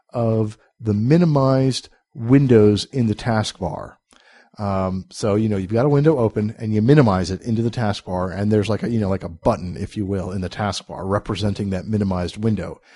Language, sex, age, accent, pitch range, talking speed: English, male, 50-69, American, 100-120 Hz, 205 wpm